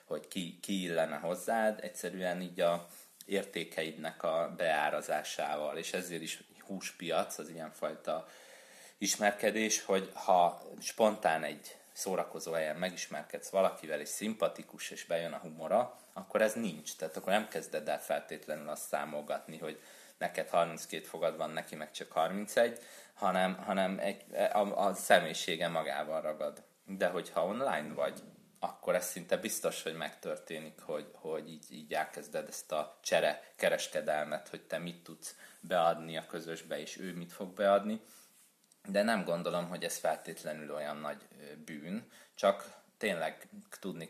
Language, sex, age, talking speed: Hungarian, male, 30-49, 135 wpm